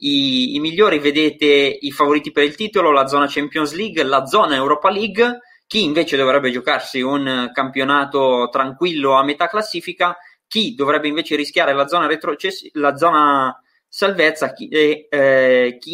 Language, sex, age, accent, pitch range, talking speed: Italian, male, 20-39, native, 140-175 Hz, 140 wpm